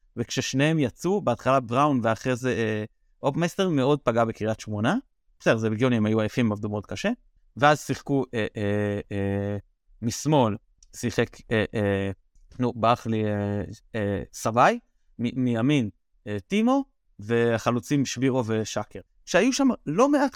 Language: Hebrew